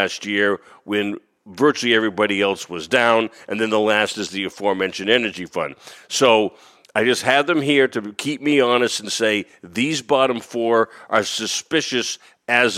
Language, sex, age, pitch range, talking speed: English, male, 50-69, 105-125 Hz, 165 wpm